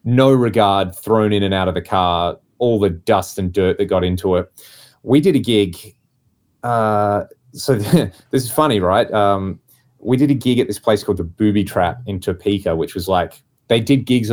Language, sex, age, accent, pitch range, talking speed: English, male, 20-39, Australian, 90-115 Hz, 200 wpm